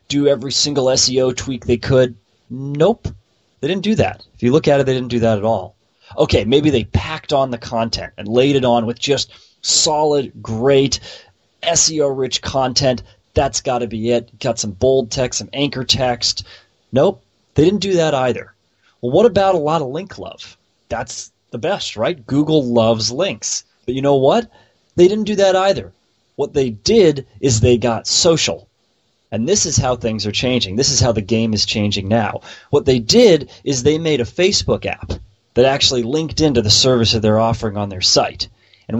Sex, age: male, 30-49